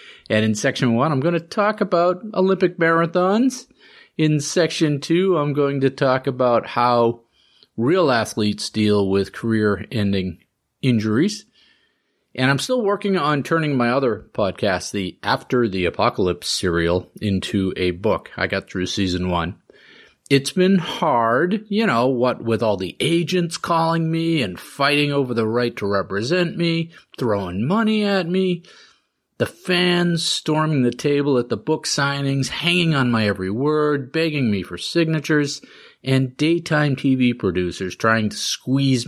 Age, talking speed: 40-59, 150 wpm